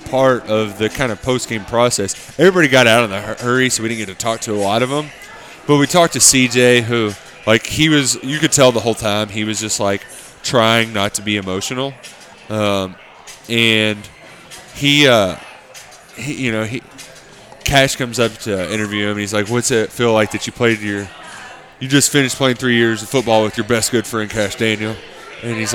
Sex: male